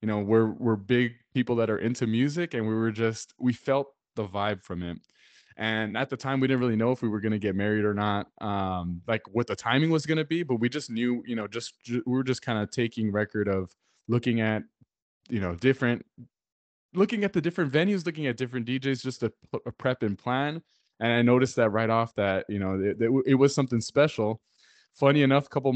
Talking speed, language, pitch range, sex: 235 wpm, English, 105-130 Hz, male